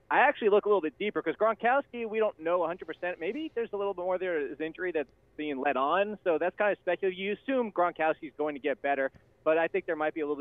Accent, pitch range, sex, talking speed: American, 140-185 Hz, male, 275 wpm